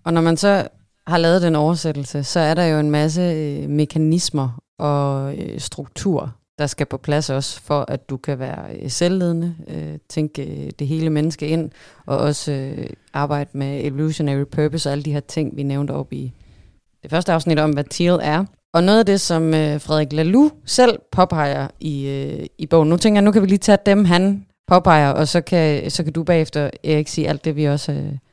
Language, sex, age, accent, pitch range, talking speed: Danish, female, 30-49, native, 145-175 Hz, 195 wpm